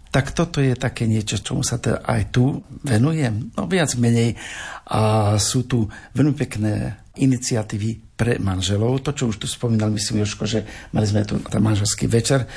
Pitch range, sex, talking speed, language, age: 110-135 Hz, male, 165 wpm, Slovak, 50-69